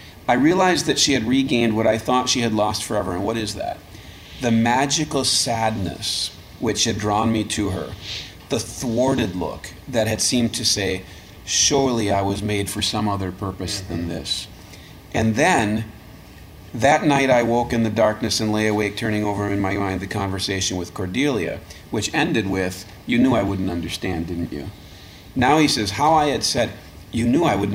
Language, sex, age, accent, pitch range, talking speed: English, male, 40-59, American, 95-120 Hz, 185 wpm